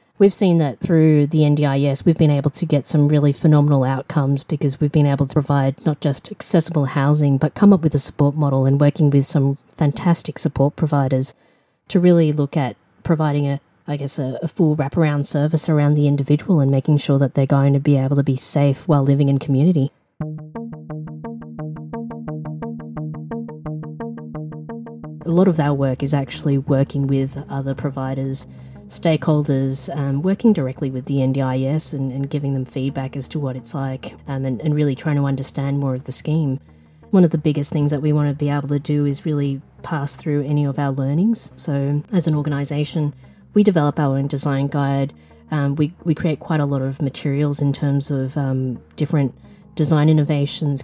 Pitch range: 135-150 Hz